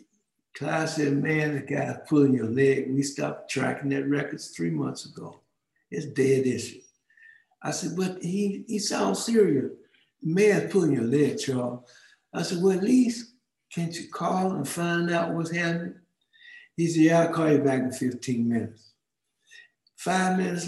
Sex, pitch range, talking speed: male, 135-185 Hz, 165 wpm